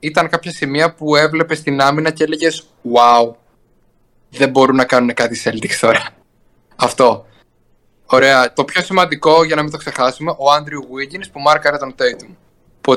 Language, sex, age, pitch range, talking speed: Greek, male, 20-39, 125-160 Hz, 160 wpm